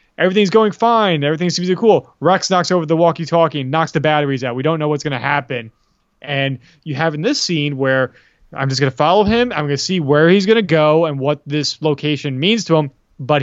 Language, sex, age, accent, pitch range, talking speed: English, male, 20-39, American, 135-165 Hz, 240 wpm